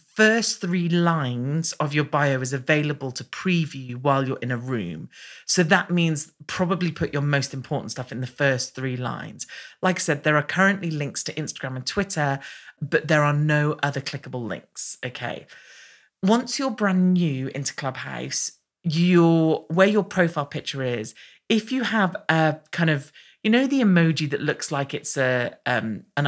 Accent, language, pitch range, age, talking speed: British, English, 130-175 Hz, 40-59, 175 wpm